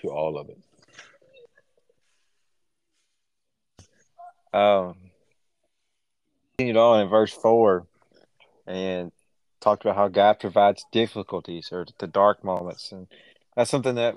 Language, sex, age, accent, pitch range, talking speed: English, male, 30-49, American, 95-110 Hz, 105 wpm